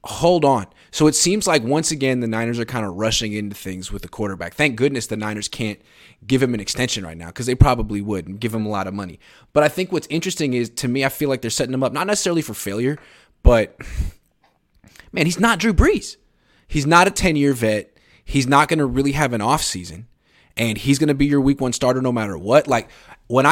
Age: 20-39